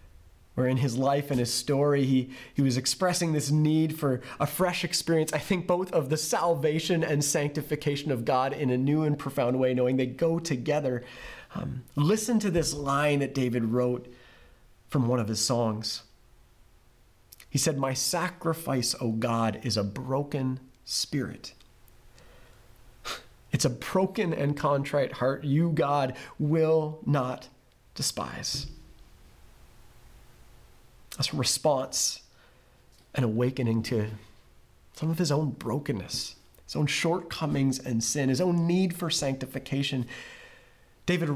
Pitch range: 125-160 Hz